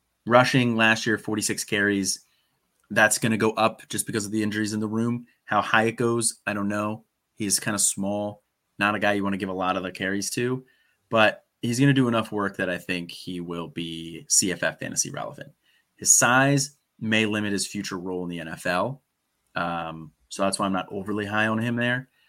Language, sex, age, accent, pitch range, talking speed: English, male, 30-49, American, 95-115 Hz, 215 wpm